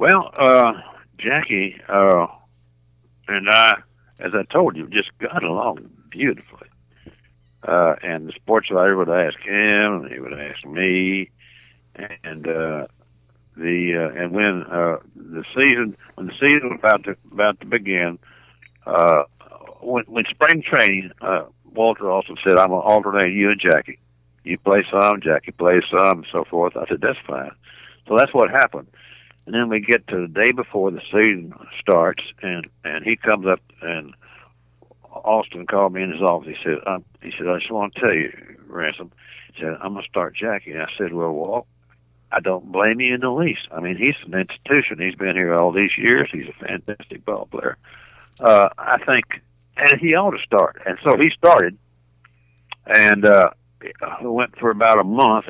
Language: English